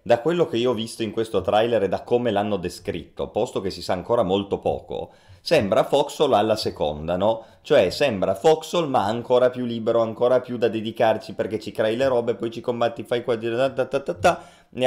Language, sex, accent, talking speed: Italian, male, native, 195 wpm